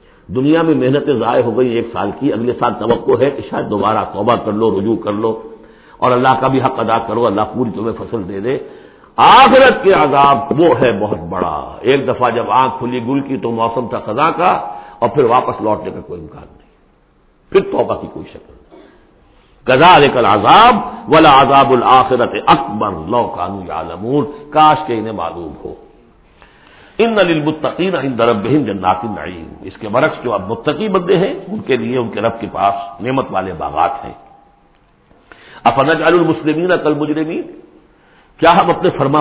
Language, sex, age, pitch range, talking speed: Urdu, male, 60-79, 115-155 Hz, 180 wpm